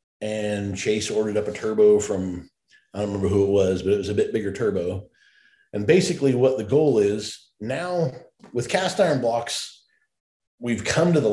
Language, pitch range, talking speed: English, 100-155 Hz, 175 wpm